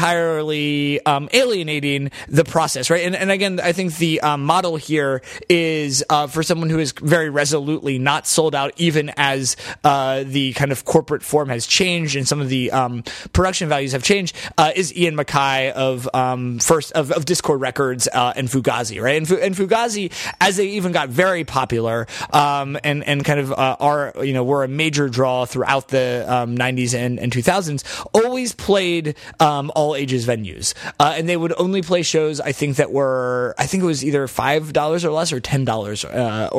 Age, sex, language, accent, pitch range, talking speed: 30-49, male, English, American, 135-170 Hz, 190 wpm